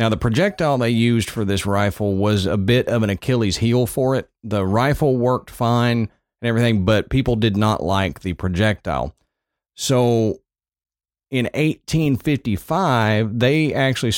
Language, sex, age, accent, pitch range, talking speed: English, male, 40-59, American, 100-125 Hz, 150 wpm